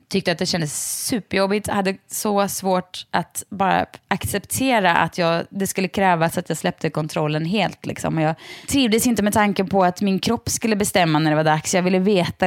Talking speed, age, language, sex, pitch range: 200 wpm, 20-39, Swedish, female, 175-225 Hz